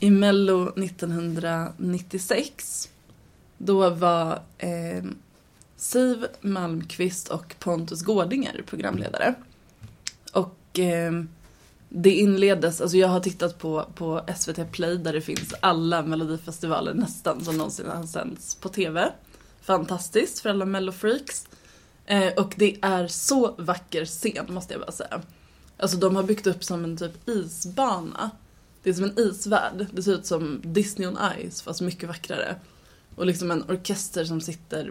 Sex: female